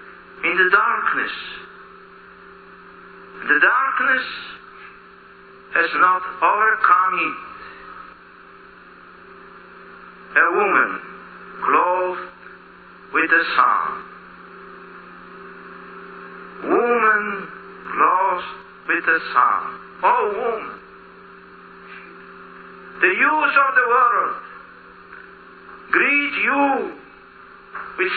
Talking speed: 65 wpm